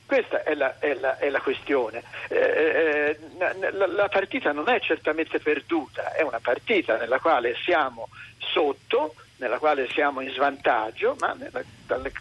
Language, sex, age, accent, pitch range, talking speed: Italian, male, 50-69, native, 150-240 Hz, 155 wpm